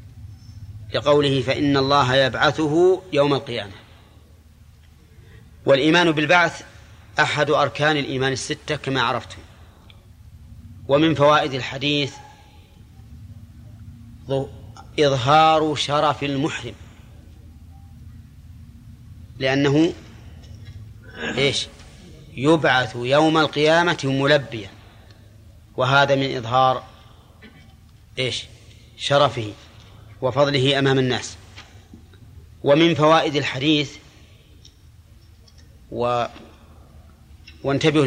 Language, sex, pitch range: Arabic, male, 100-140 Hz